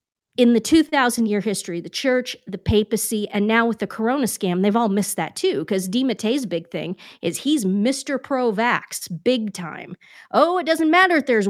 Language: English